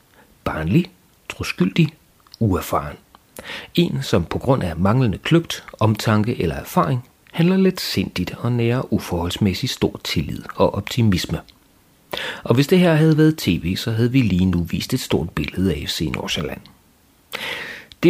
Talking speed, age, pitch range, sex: 145 wpm, 40-59, 90-135 Hz, male